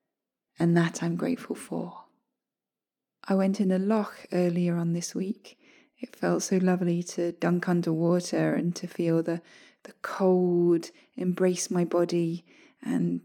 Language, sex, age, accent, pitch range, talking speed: English, female, 20-39, British, 170-210 Hz, 140 wpm